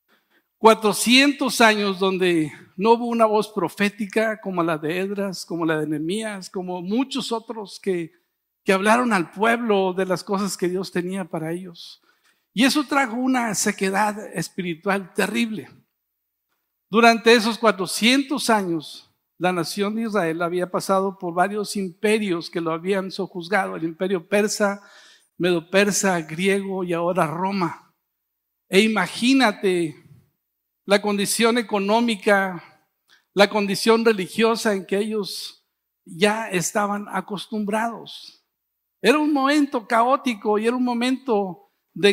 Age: 50-69